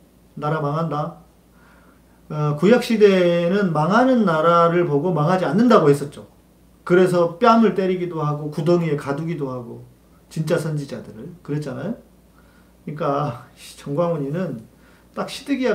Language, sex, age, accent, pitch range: Korean, male, 40-59, native, 110-165 Hz